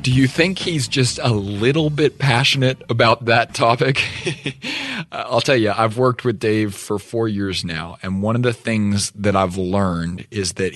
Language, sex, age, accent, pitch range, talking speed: English, male, 30-49, American, 105-135 Hz, 185 wpm